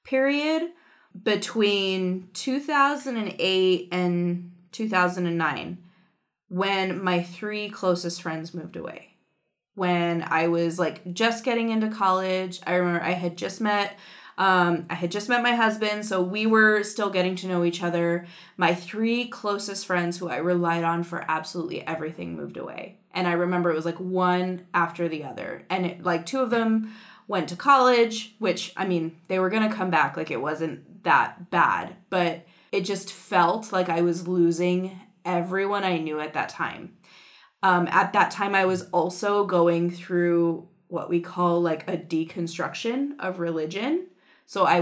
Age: 20-39